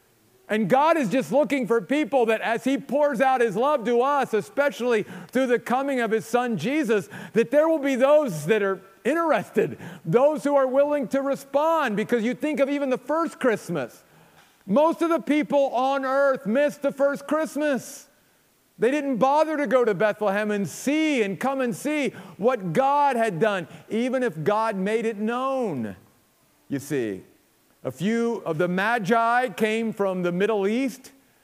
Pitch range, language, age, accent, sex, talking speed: 210-270 Hz, English, 50-69, American, male, 175 wpm